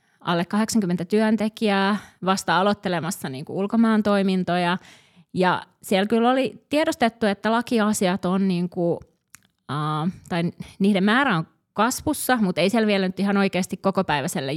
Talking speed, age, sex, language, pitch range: 130 wpm, 30-49, female, Finnish, 185-235 Hz